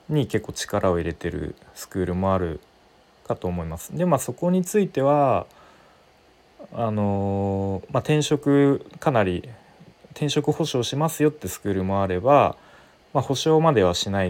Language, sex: Japanese, male